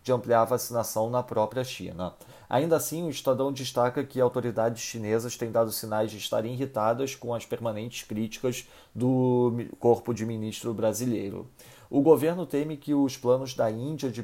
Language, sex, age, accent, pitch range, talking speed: Portuguese, male, 40-59, Brazilian, 110-130 Hz, 165 wpm